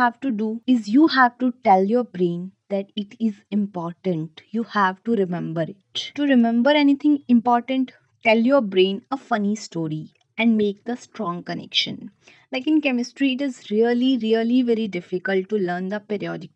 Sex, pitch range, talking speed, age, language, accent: female, 200-255 Hz, 170 wpm, 20-39, Hindi, native